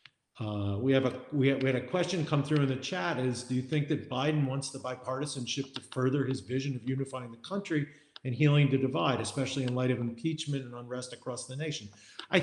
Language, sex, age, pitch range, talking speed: English, male, 50-69, 120-150 Hz, 210 wpm